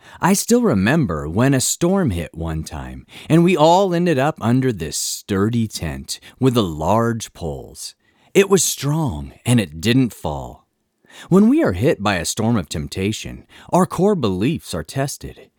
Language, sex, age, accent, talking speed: English, male, 30-49, American, 165 wpm